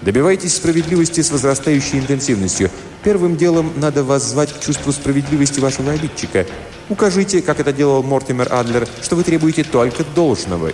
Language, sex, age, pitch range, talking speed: Russian, male, 30-49, 105-150 Hz, 145 wpm